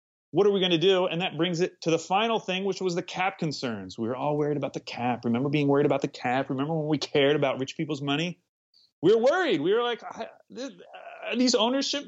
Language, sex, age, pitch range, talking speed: English, male, 30-49, 115-170 Hz, 245 wpm